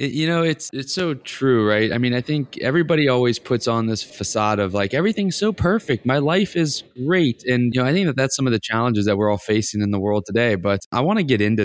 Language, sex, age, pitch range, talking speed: English, male, 20-39, 105-140 Hz, 265 wpm